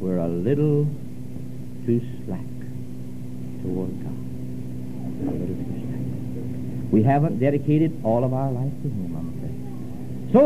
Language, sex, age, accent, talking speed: English, male, 60-79, American, 110 wpm